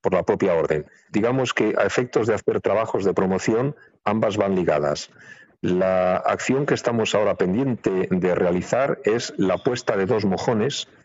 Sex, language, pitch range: male, Spanish, 85-100 Hz